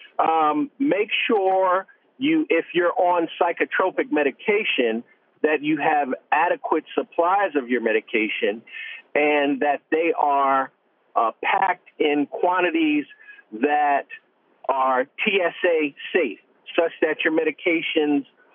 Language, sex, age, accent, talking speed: English, male, 50-69, American, 105 wpm